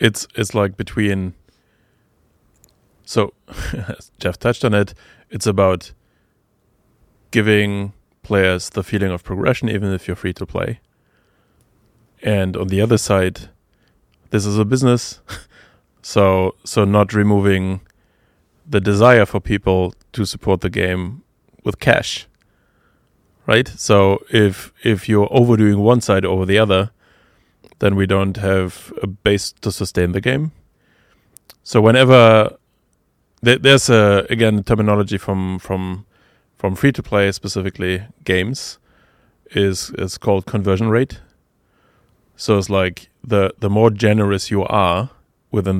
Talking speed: 125 wpm